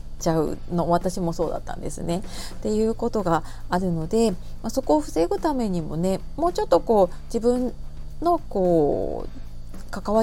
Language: Japanese